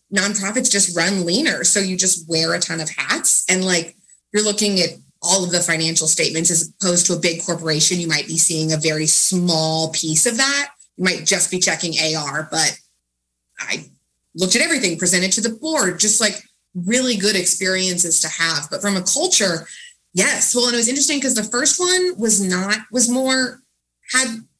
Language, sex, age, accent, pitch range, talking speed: English, female, 20-39, American, 180-260 Hz, 195 wpm